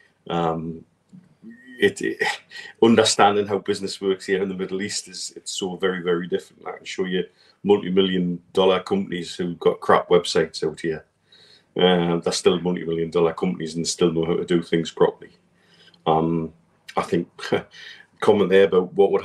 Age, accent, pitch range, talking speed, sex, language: 40-59, British, 90-115 Hz, 170 wpm, male, English